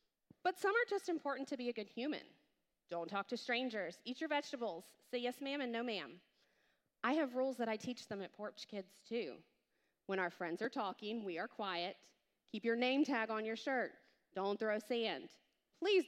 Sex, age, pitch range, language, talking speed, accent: female, 30-49, 200-275 Hz, English, 200 wpm, American